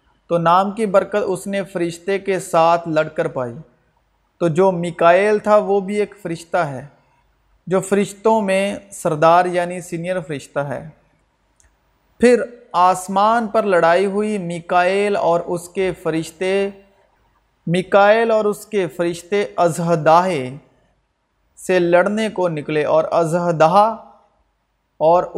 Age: 40-59